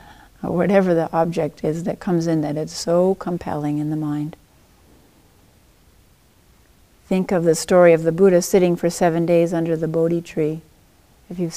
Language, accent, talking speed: English, American, 165 wpm